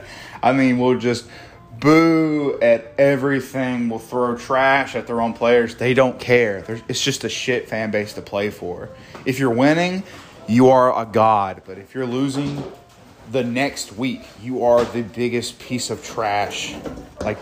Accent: American